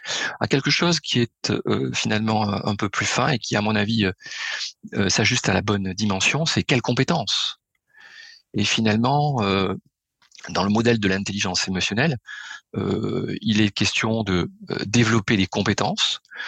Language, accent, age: French, French, 40-59